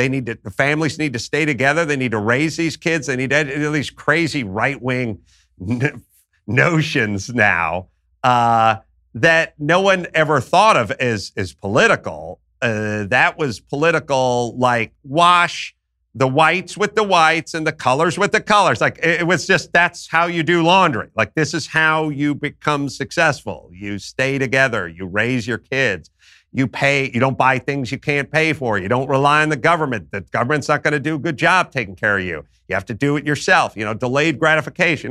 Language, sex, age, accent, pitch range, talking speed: English, male, 50-69, American, 110-160 Hz, 195 wpm